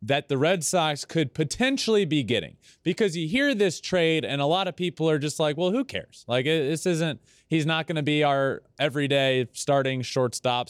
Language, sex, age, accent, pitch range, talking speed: English, male, 30-49, American, 125-180 Hz, 200 wpm